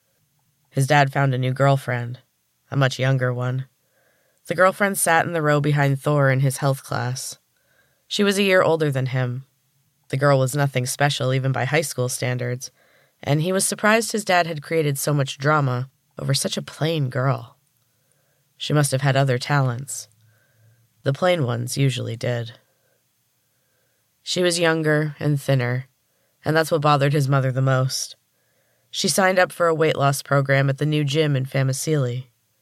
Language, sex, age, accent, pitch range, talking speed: English, female, 20-39, American, 130-155 Hz, 170 wpm